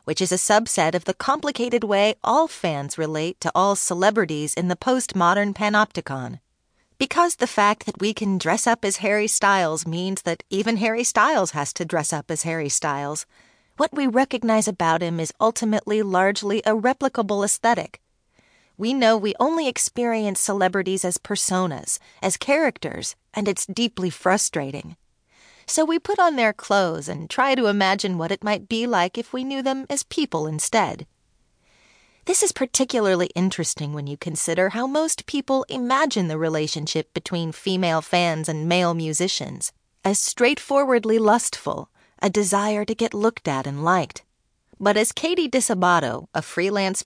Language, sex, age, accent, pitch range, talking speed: English, female, 30-49, American, 170-235 Hz, 160 wpm